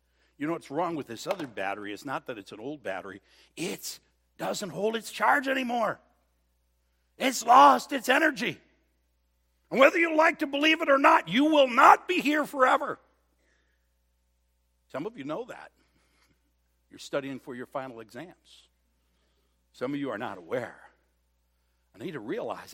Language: English